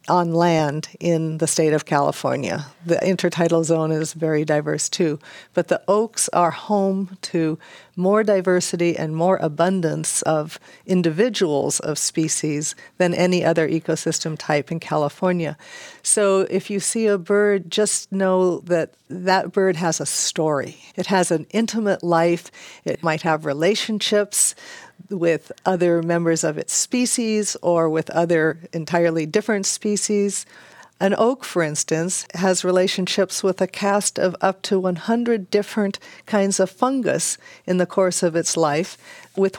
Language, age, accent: English, 50-69, American